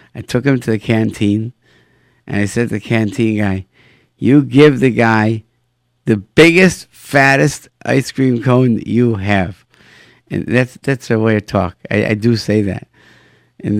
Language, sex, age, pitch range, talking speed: English, male, 50-69, 110-130 Hz, 170 wpm